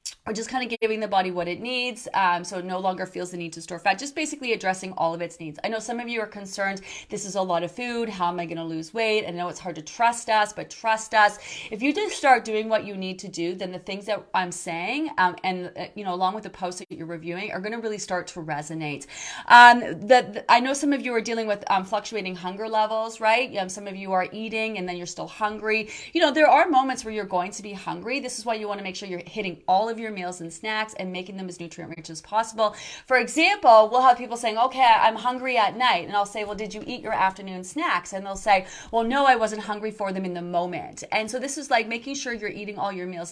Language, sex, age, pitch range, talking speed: English, female, 30-49, 180-225 Hz, 280 wpm